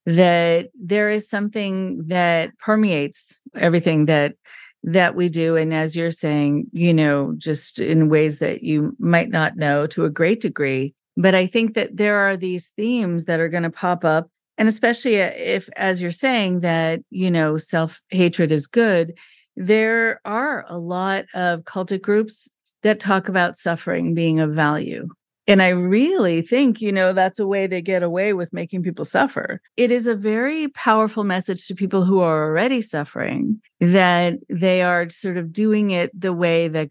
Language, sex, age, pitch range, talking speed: English, female, 40-59, 160-200 Hz, 175 wpm